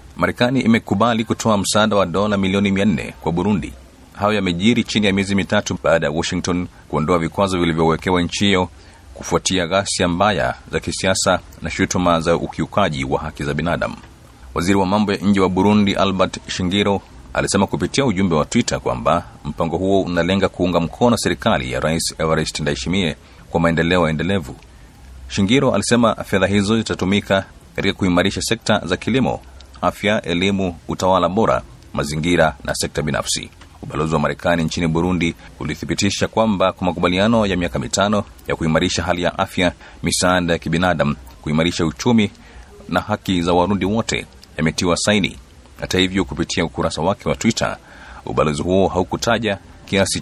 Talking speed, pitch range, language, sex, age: 145 wpm, 80-100 Hz, Swahili, male, 40-59